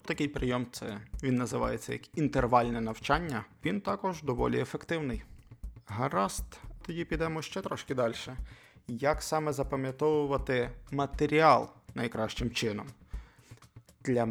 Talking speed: 100 wpm